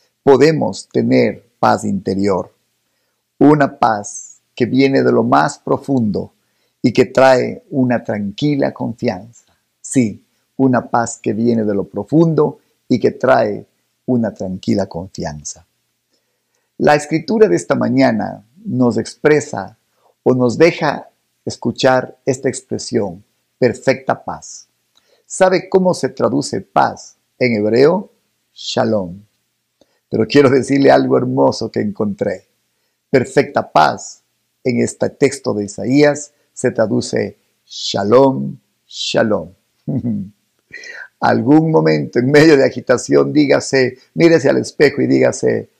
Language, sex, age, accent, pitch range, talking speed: Spanish, male, 50-69, Mexican, 100-135 Hz, 110 wpm